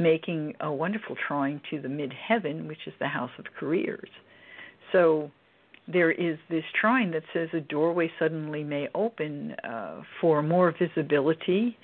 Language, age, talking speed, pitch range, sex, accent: English, 60-79, 145 wpm, 145-180 Hz, female, American